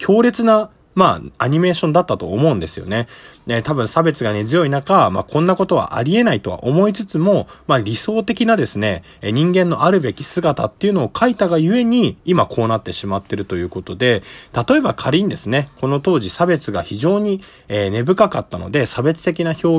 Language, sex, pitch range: Japanese, male, 105-175 Hz